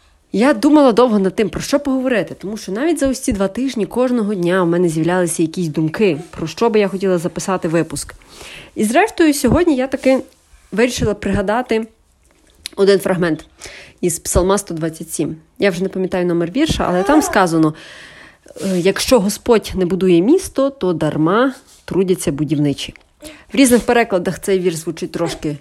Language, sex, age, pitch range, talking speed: Ukrainian, female, 30-49, 170-245 Hz, 155 wpm